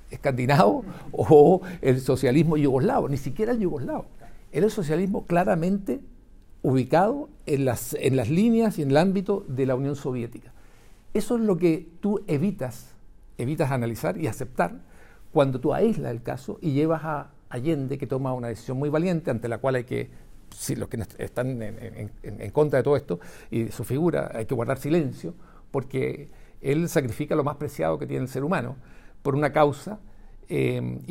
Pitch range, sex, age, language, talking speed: 120-160 Hz, male, 60-79, Spanish, 175 wpm